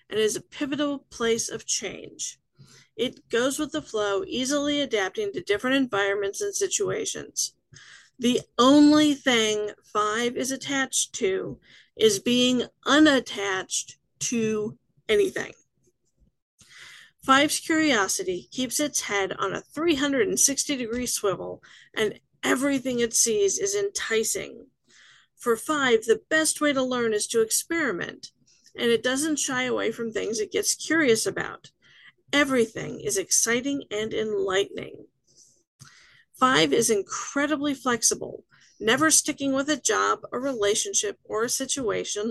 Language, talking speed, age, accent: English, 120 wpm, 40-59, American